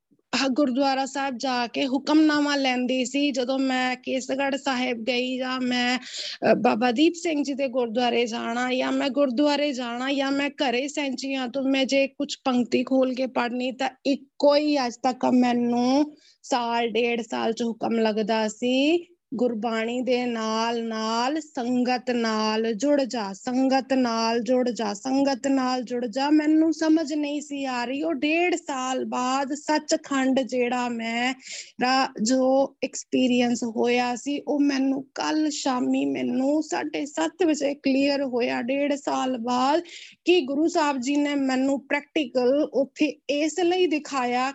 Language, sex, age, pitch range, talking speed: Punjabi, female, 20-39, 245-290 Hz, 145 wpm